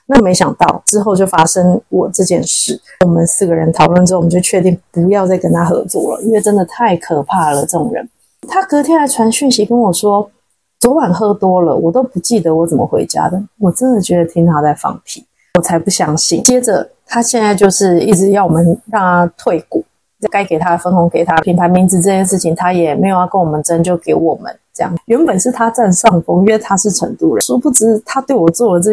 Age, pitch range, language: 20-39, 175-230 Hz, Chinese